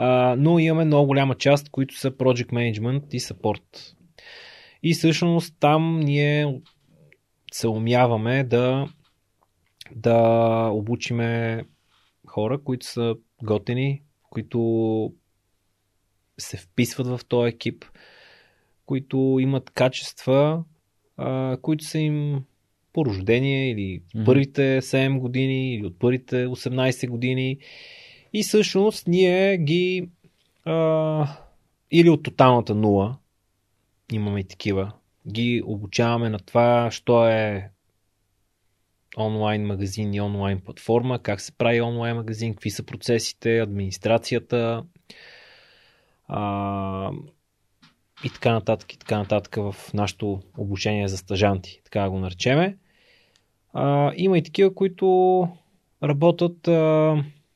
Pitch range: 105-145 Hz